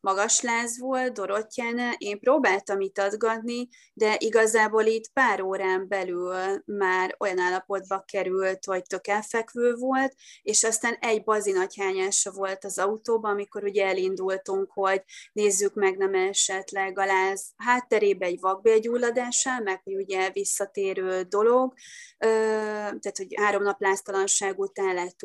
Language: Hungarian